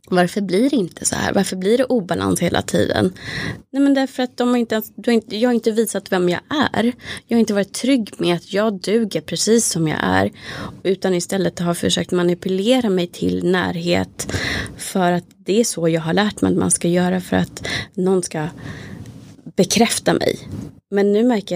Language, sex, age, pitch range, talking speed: Swedish, female, 20-39, 165-210 Hz, 190 wpm